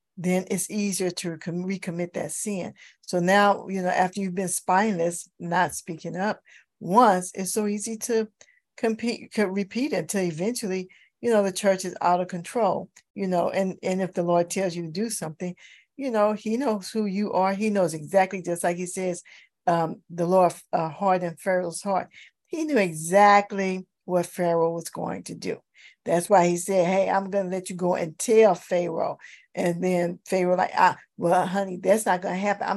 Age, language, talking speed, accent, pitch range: 50-69, English, 195 wpm, American, 175-205 Hz